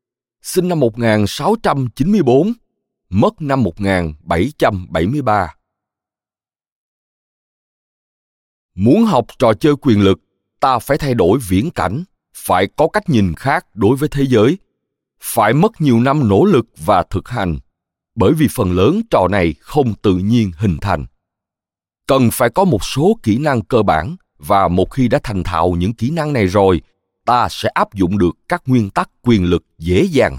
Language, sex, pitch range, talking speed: Vietnamese, male, 95-150 Hz, 155 wpm